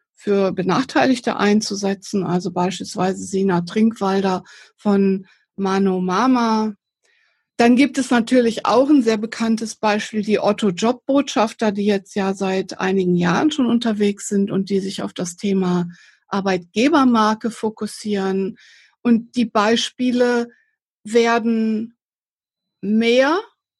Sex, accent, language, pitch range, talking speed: female, German, English, 195-235 Hz, 110 wpm